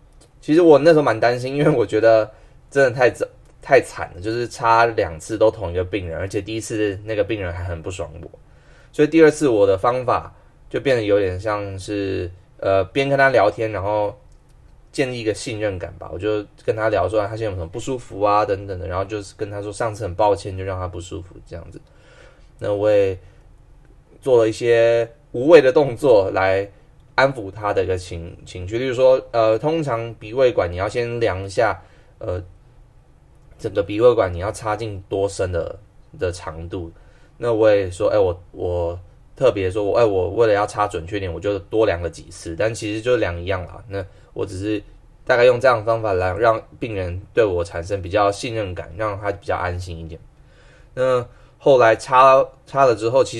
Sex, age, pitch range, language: male, 20-39, 95-125 Hz, Chinese